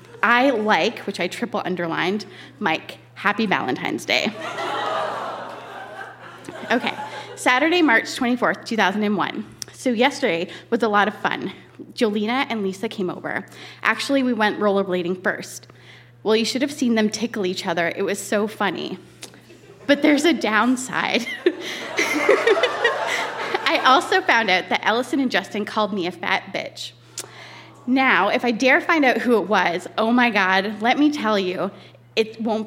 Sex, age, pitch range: female, 20-39, 200-255 Hz